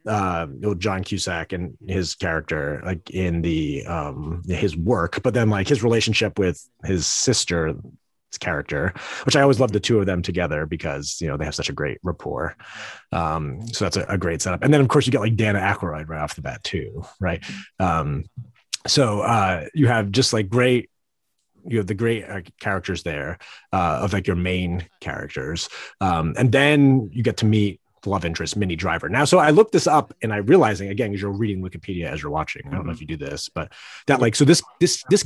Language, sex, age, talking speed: English, male, 30-49, 215 wpm